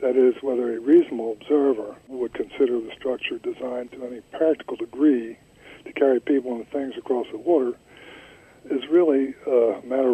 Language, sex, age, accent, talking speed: English, male, 60-79, American, 160 wpm